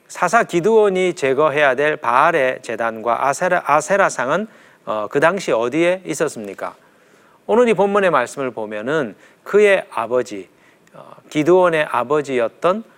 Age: 40-59